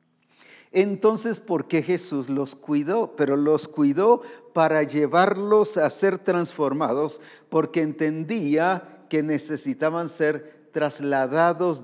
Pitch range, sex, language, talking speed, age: 145-185 Hz, male, English, 100 wpm, 50-69